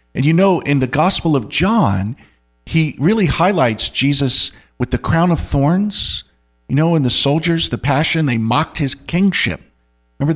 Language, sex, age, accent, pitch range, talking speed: English, male, 50-69, American, 105-160 Hz, 170 wpm